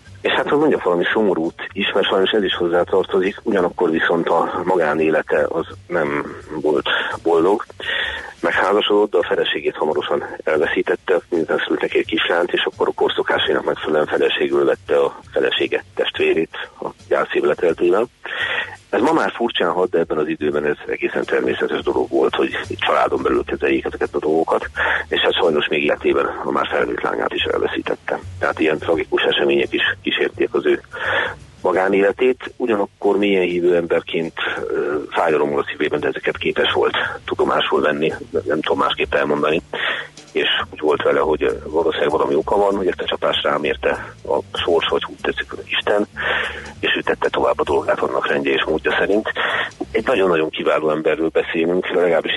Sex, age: male, 40-59